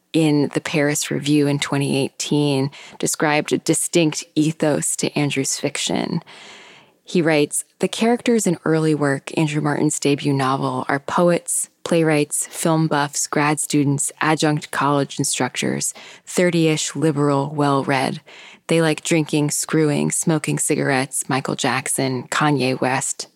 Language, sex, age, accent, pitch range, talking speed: English, female, 20-39, American, 145-165 Hz, 120 wpm